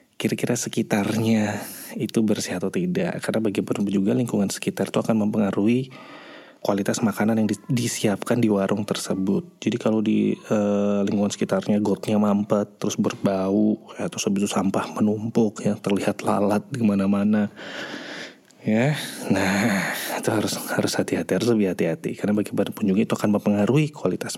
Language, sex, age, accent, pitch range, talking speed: English, male, 20-39, Indonesian, 95-110 Hz, 145 wpm